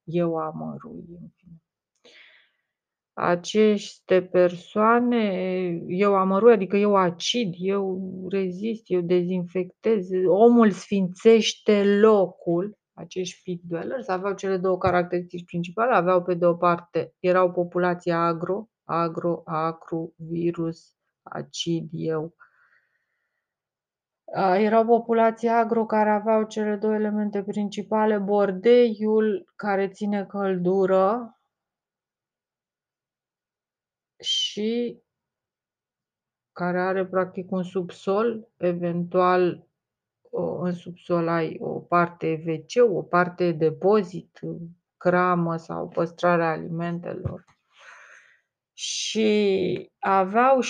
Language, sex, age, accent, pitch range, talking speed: Romanian, female, 30-49, native, 175-210 Hz, 85 wpm